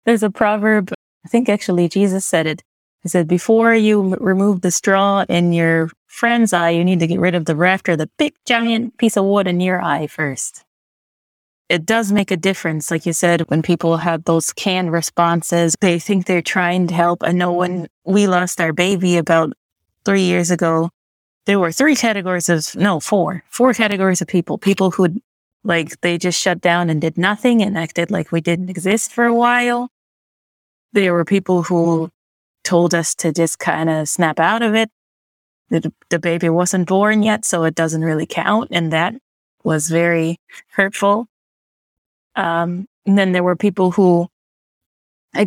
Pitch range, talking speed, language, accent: 170-205 Hz, 180 wpm, English, American